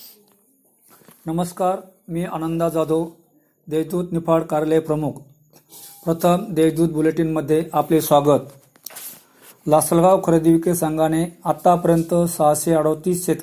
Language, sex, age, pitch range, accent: Marathi, male, 50-69, 155-175 Hz, native